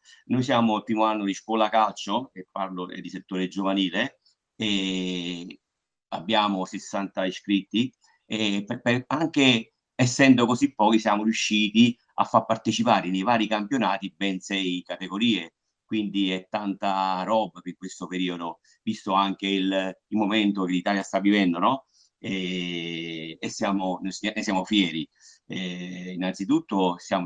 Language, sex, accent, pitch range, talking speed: Italian, male, native, 90-105 Hz, 130 wpm